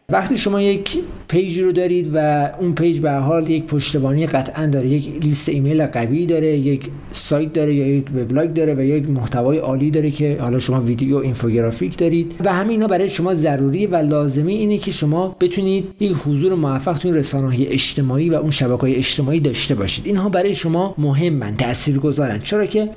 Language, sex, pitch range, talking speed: Persian, male, 140-180 Hz, 190 wpm